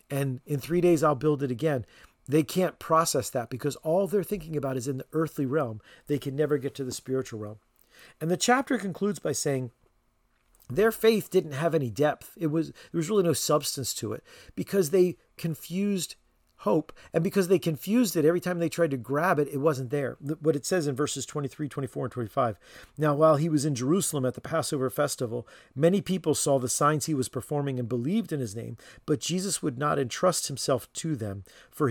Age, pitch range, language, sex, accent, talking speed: 40-59, 130-170 Hz, English, male, American, 210 wpm